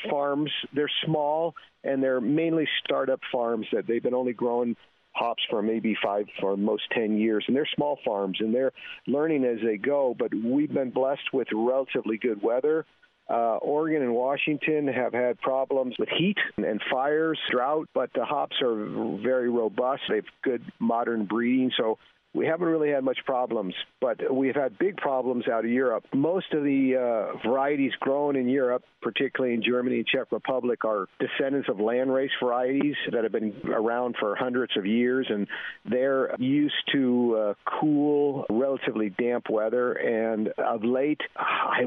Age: 50-69